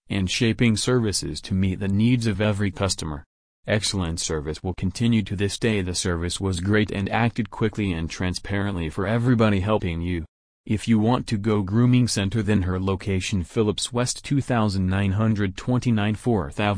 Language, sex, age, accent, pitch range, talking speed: English, male, 30-49, American, 95-110 Hz, 155 wpm